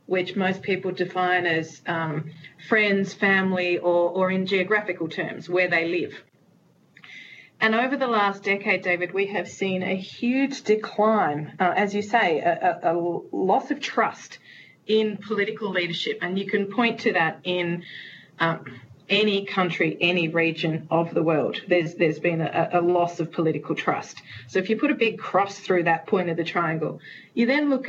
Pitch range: 180-220 Hz